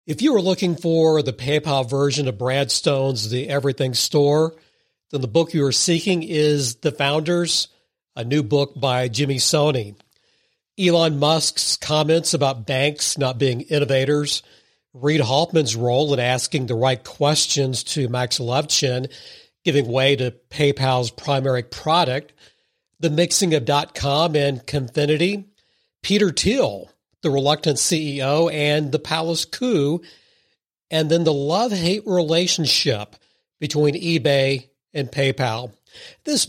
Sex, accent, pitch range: male, American, 135-165 Hz